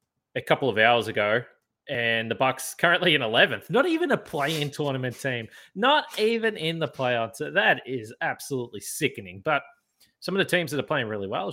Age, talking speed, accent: 20-39, 195 wpm, Australian